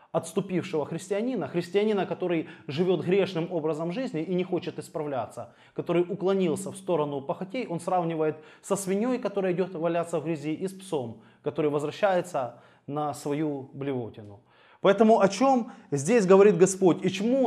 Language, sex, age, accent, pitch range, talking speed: Russian, male, 20-39, native, 140-185 Hz, 145 wpm